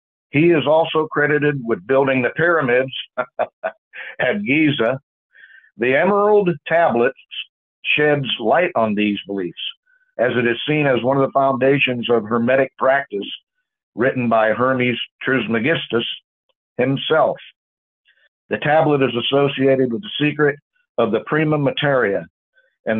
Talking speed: 125 wpm